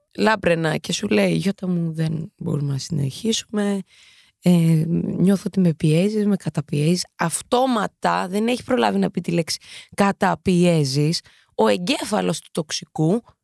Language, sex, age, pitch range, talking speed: Greek, female, 20-39, 160-215 Hz, 135 wpm